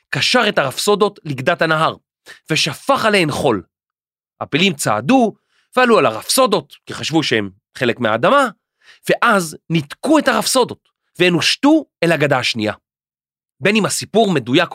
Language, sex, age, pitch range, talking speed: Hebrew, male, 30-49, 145-220 Hz, 125 wpm